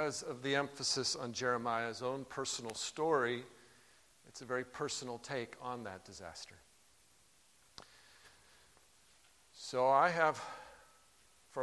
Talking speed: 105 wpm